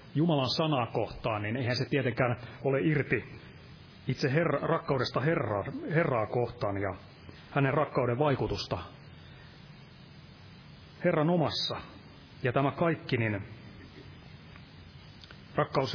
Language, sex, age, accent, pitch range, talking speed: Finnish, male, 30-49, native, 110-145 Hz, 90 wpm